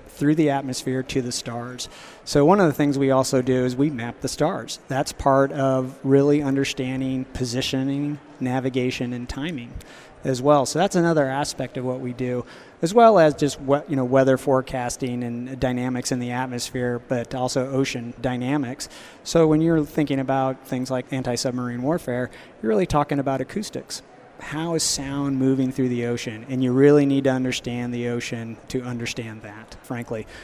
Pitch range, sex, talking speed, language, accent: 125-140 Hz, male, 175 wpm, English, American